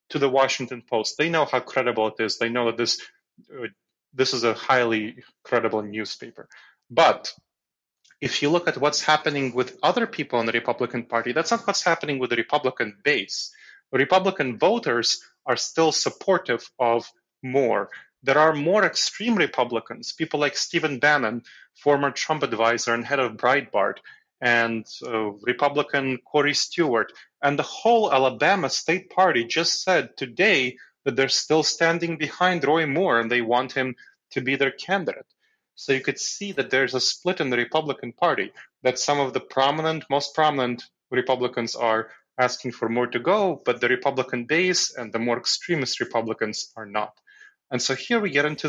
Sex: male